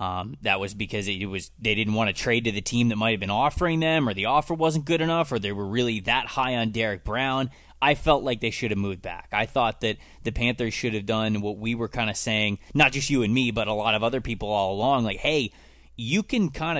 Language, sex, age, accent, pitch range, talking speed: English, male, 20-39, American, 105-135 Hz, 270 wpm